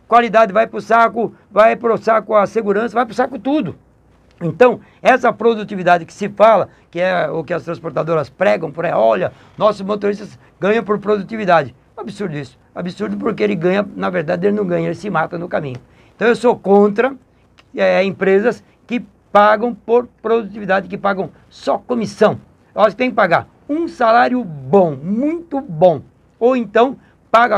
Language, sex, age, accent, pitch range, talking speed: Portuguese, male, 60-79, Brazilian, 180-230 Hz, 165 wpm